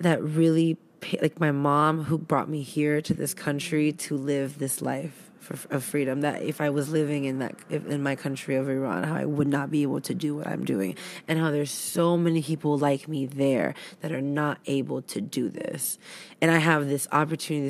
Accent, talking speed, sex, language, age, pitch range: American, 220 wpm, female, English, 20-39, 145-175 Hz